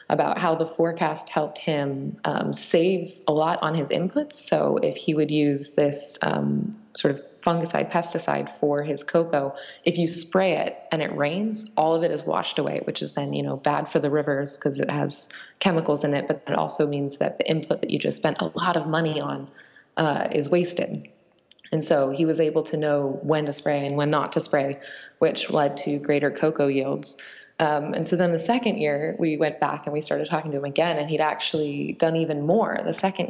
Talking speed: 215 wpm